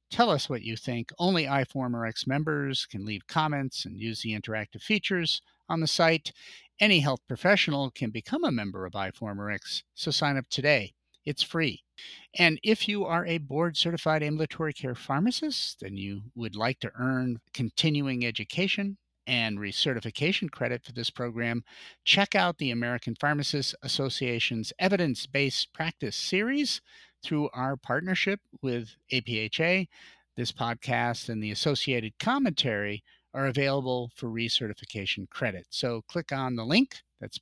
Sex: male